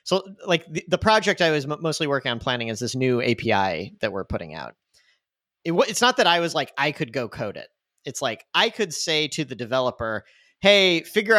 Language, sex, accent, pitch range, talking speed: English, male, American, 125-160 Hz, 205 wpm